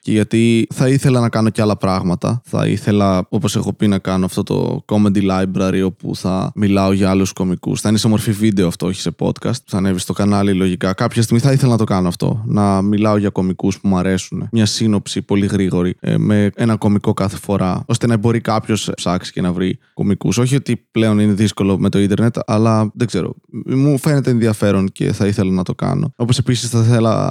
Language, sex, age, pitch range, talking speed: Greek, male, 20-39, 95-115 Hz, 215 wpm